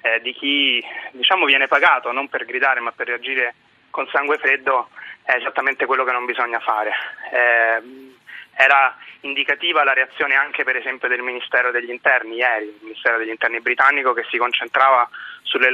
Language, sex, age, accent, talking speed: Italian, male, 30-49, native, 170 wpm